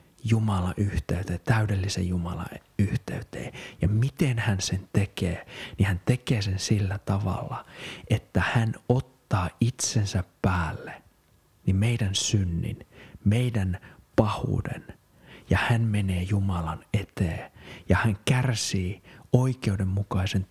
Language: English